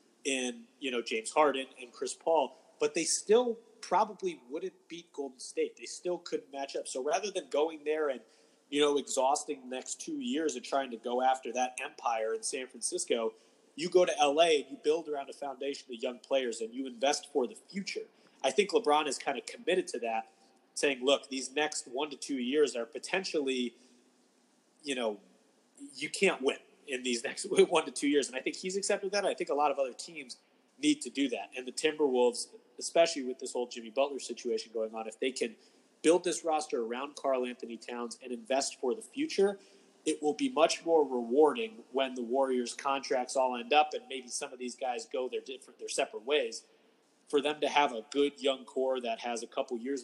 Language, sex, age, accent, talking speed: English, male, 30-49, American, 210 wpm